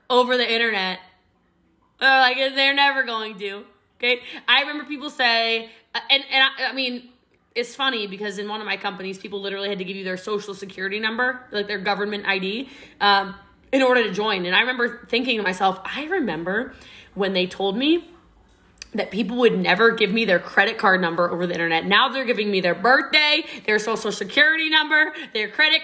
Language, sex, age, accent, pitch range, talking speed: English, female, 20-39, American, 215-305 Hz, 195 wpm